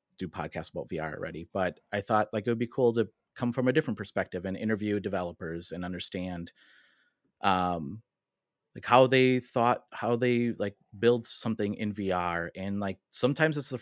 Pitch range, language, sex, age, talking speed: 100-125 Hz, English, male, 30-49, 180 wpm